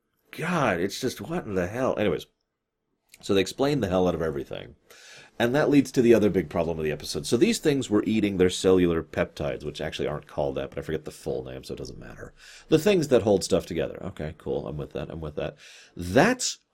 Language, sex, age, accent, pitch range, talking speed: English, male, 30-49, American, 100-165 Hz, 235 wpm